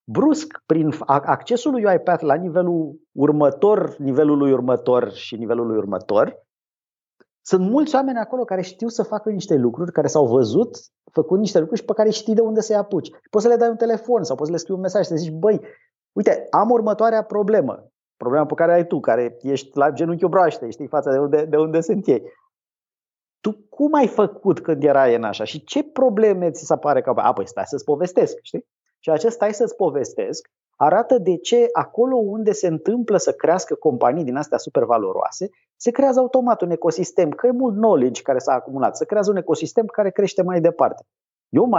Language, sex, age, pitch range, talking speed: Romanian, male, 30-49, 145-225 Hz, 200 wpm